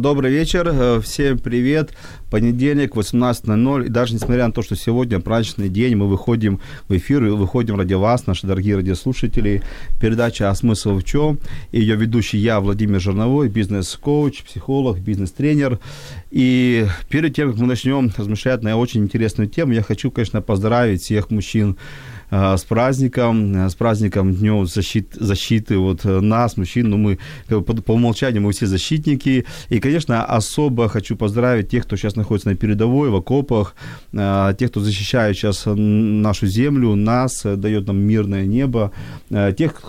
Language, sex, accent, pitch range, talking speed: Ukrainian, male, native, 100-125 Hz, 150 wpm